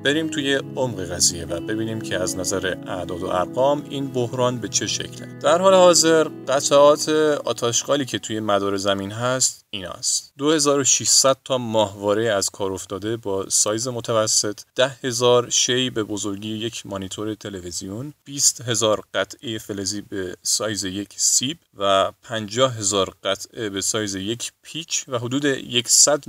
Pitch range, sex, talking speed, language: 100-125 Hz, male, 140 wpm, Persian